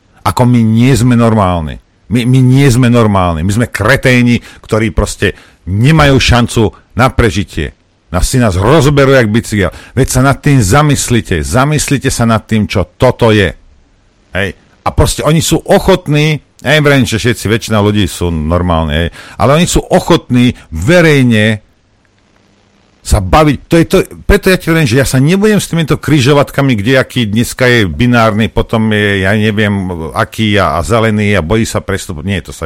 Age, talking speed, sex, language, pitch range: 50-69, 165 wpm, male, Slovak, 100-150 Hz